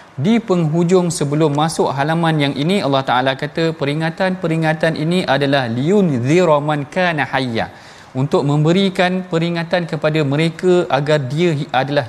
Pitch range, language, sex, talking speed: 140-175 Hz, Malayalam, male, 120 wpm